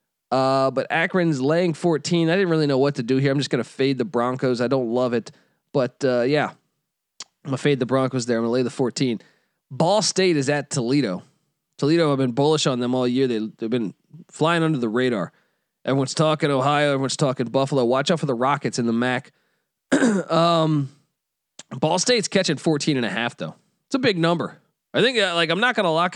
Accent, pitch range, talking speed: American, 125-160 Hz, 215 wpm